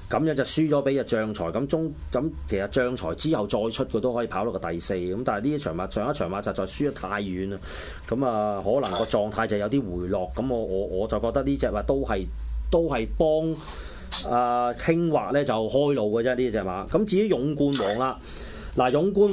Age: 30-49